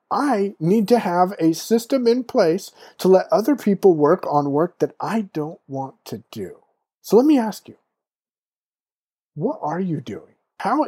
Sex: male